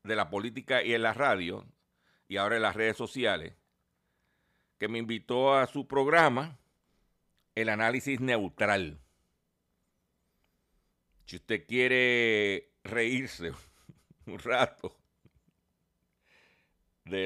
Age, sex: 60-79, male